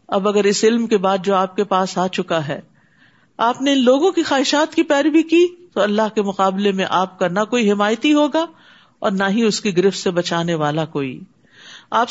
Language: Urdu